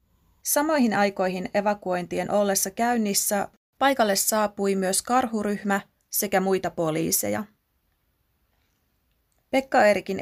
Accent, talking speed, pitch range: native, 75 wpm, 180-210 Hz